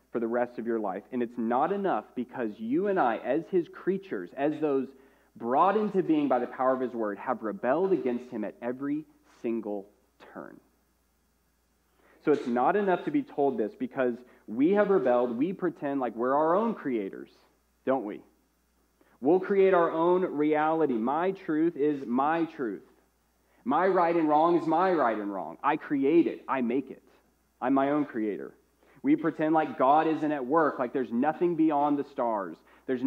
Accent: American